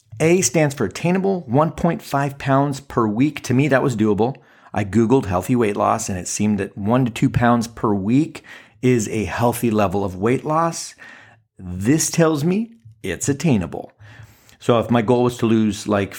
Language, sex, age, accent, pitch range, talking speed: English, male, 40-59, American, 105-135 Hz, 180 wpm